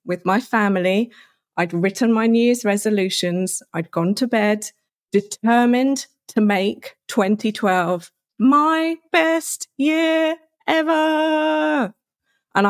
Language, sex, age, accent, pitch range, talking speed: English, female, 30-49, British, 195-250 Hz, 105 wpm